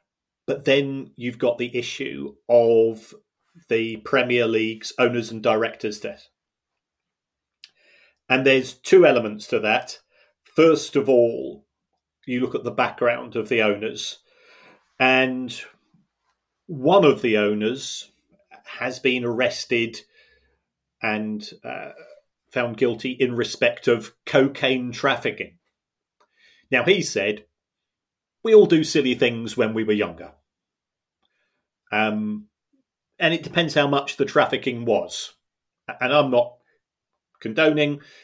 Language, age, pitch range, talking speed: English, 40-59, 115-140 Hz, 115 wpm